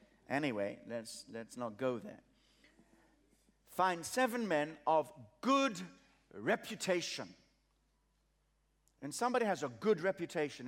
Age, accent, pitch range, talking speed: 60-79, British, 125-170 Hz, 100 wpm